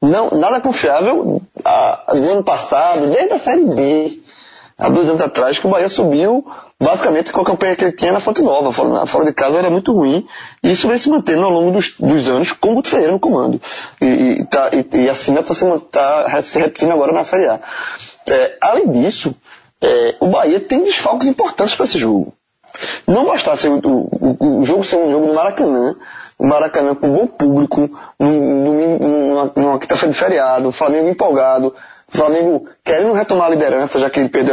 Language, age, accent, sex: Portuguese, 20-39, Brazilian, male